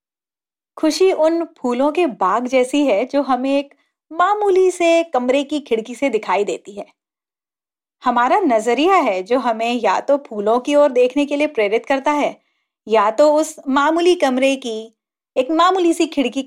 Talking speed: 165 wpm